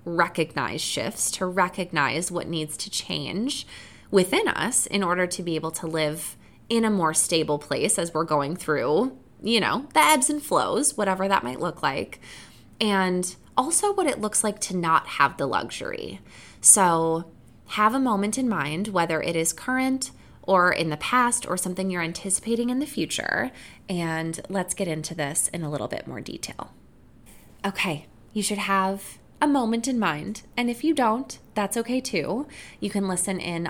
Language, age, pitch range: English, 20-39, 160-220 Hz